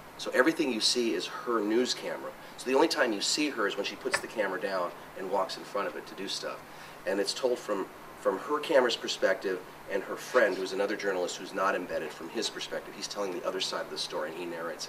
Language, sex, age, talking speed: English, male, 30-49, 250 wpm